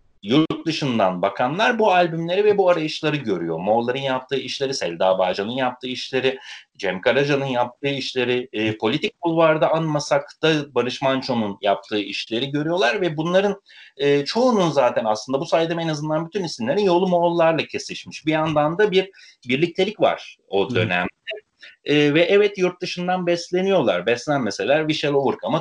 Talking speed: 145 wpm